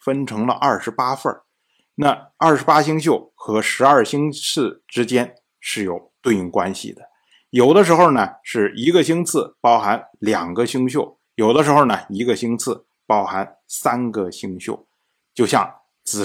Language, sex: Chinese, male